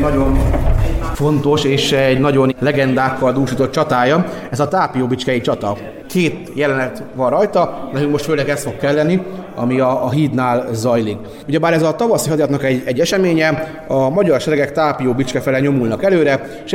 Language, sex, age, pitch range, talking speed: Hungarian, male, 30-49, 130-165 Hz, 150 wpm